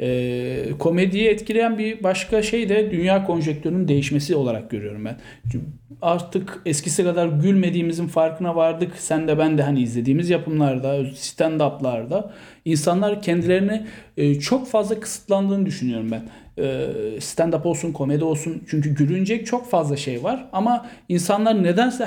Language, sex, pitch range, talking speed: Turkish, male, 145-195 Hz, 130 wpm